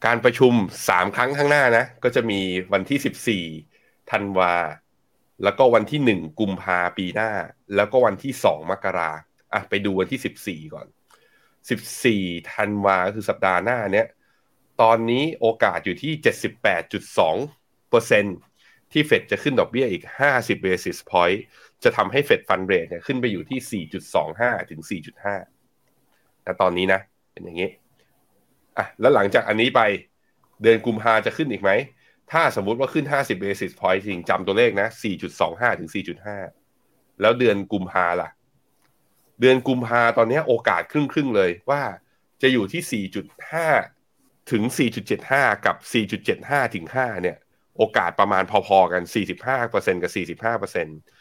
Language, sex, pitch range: Thai, male, 95-125 Hz